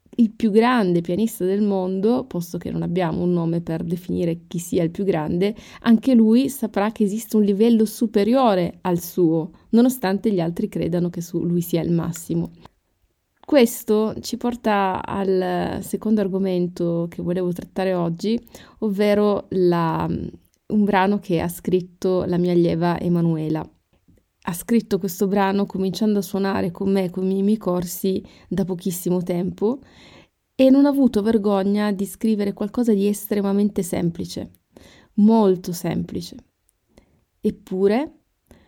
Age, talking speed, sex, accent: 20-39, 140 wpm, female, native